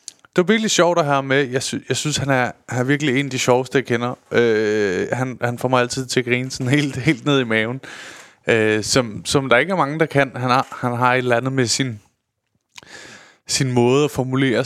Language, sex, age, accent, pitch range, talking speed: Danish, male, 20-39, native, 120-145 Hz, 240 wpm